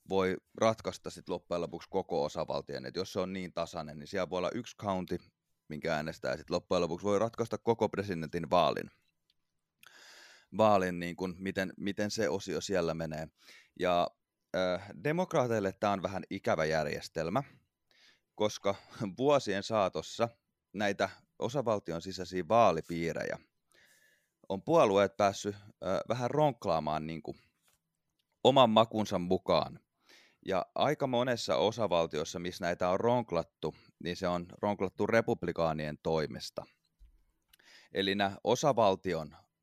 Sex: male